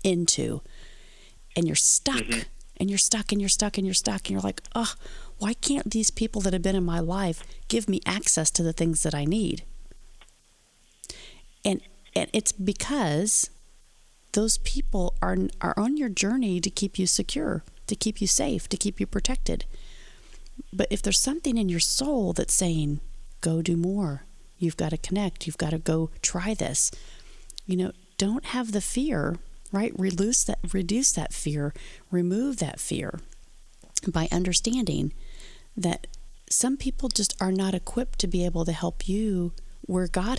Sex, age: female, 40-59